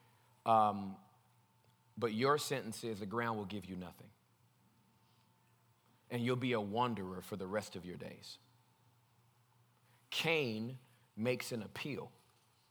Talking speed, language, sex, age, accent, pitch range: 125 wpm, English, male, 30-49, American, 110-130 Hz